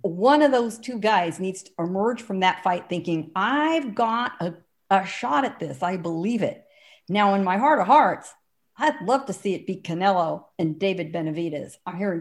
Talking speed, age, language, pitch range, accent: 195 wpm, 50-69, English, 175-245 Hz, American